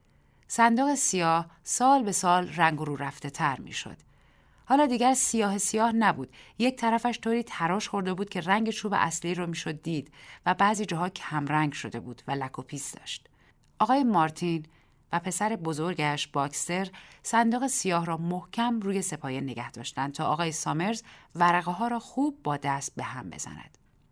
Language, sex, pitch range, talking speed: Persian, female, 150-225 Hz, 165 wpm